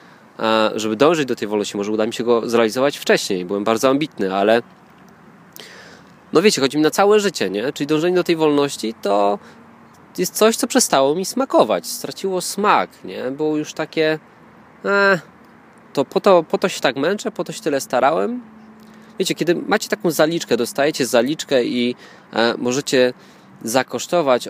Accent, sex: native, male